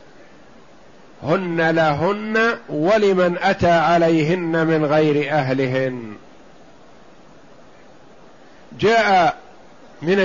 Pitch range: 160-200 Hz